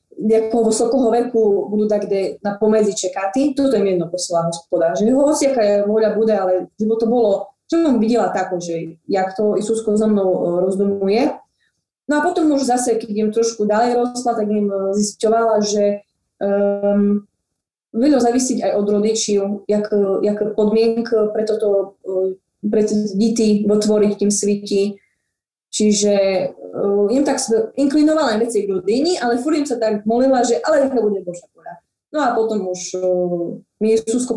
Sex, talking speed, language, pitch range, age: female, 155 wpm, Slovak, 195-230 Hz, 20-39